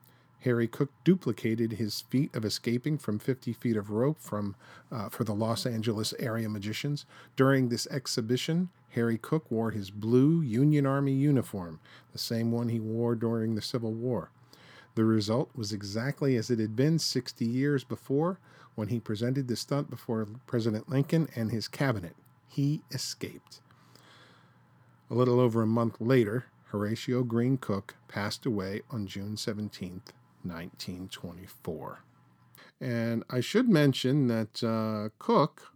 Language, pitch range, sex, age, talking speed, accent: English, 110-140 Hz, male, 40-59, 145 wpm, American